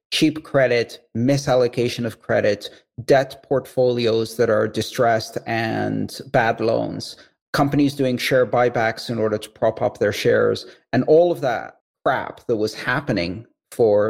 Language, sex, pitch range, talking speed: English, male, 110-135 Hz, 140 wpm